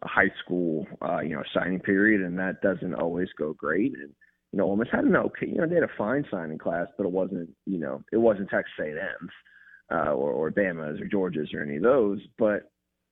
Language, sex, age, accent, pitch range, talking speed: English, male, 30-49, American, 90-110 Hz, 220 wpm